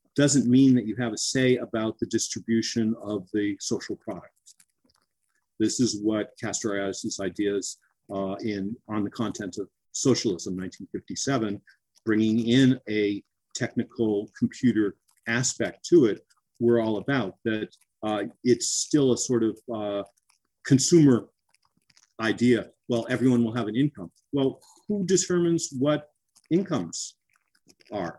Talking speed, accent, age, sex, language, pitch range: 130 wpm, American, 50-69, male, English, 100-120 Hz